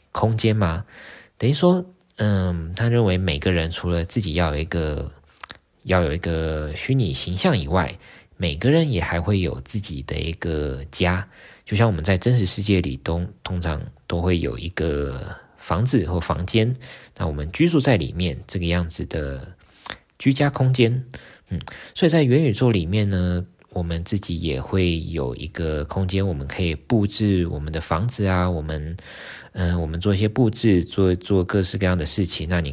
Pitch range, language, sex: 85-110 Hz, Chinese, male